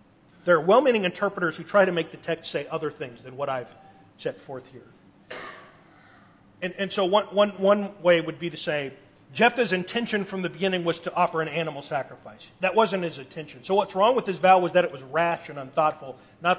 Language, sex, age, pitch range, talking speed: English, male, 40-59, 145-195 Hz, 215 wpm